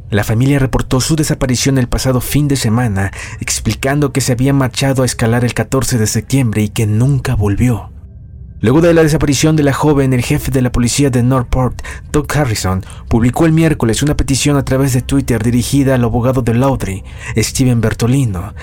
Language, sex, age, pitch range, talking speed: Spanish, male, 50-69, 110-135 Hz, 185 wpm